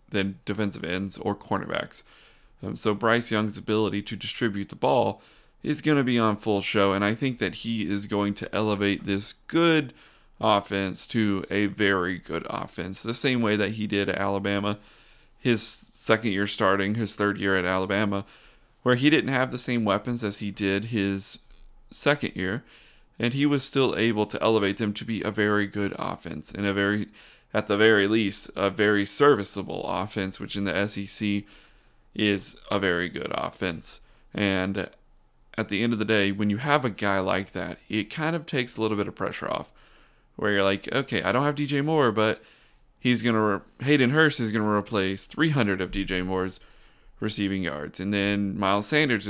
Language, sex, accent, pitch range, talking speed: English, male, American, 100-115 Hz, 190 wpm